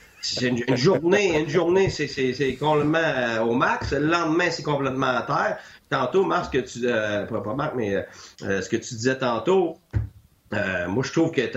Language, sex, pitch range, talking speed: French, male, 115-150 Hz, 200 wpm